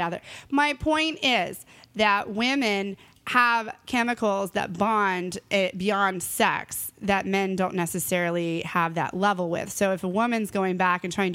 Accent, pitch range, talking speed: American, 190-245 Hz, 150 wpm